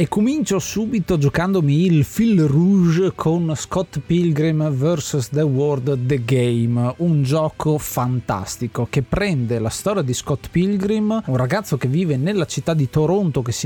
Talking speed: 155 wpm